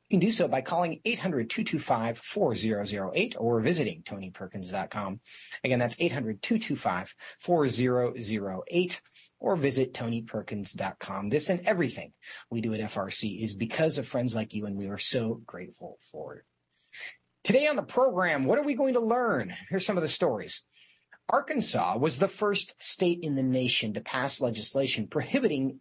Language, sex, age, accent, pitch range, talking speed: English, male, 40-59, American, 110-180 Hz, 145 wpm